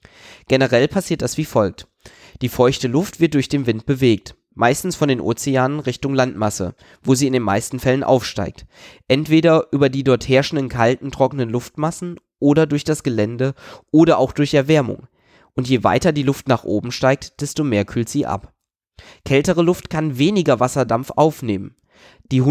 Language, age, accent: German, 20-39, German